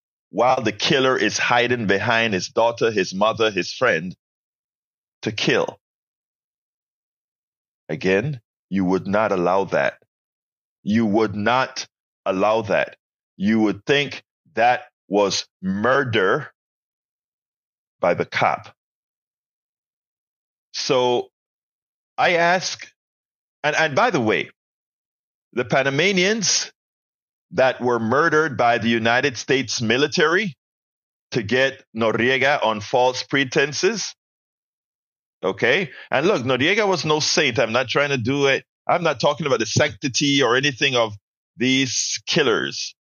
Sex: male